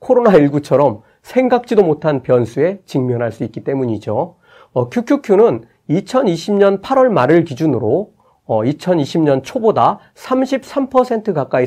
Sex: male